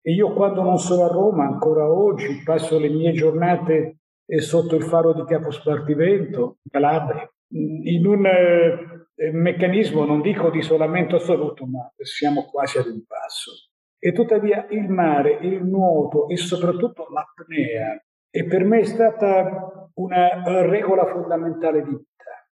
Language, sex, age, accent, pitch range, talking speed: Italian, male, 50-69, native, 165-200 Hz, 140 wpm